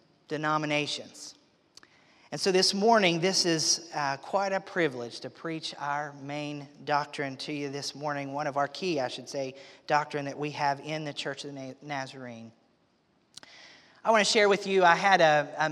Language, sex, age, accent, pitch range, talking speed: English, male, 40-59, American, 145-180 Hz, 180 wpm